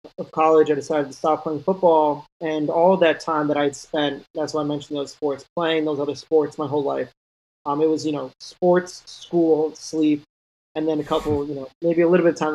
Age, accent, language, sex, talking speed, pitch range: 20-39, American, English, male, 230 wpm, 145-165 Hz